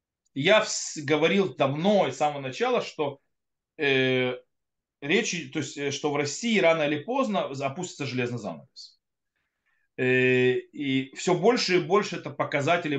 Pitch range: 140-195 Hz